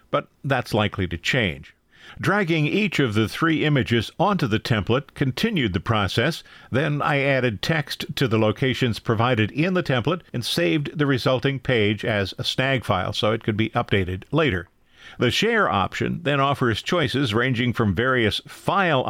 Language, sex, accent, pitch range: English, male, American, 110-145 Hz